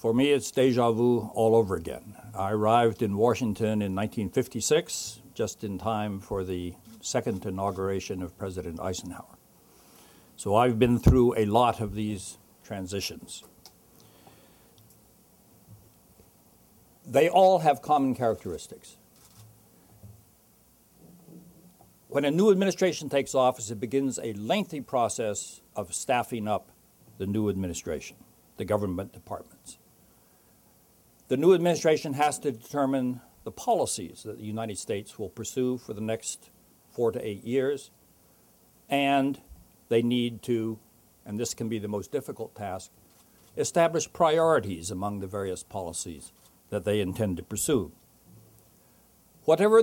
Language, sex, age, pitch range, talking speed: English, male, 60-79, 100-135 Hz, 125 wpm